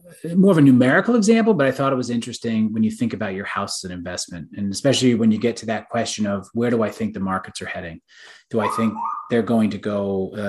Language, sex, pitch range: English, male, 105-135 Hz